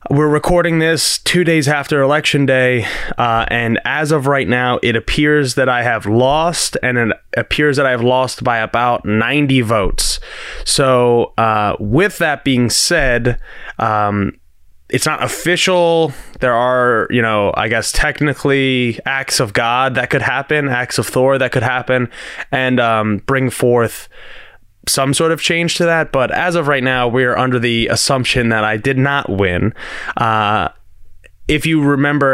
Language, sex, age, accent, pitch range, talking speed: English, male, 20-39, American, 115-145 Hz, 165 wpm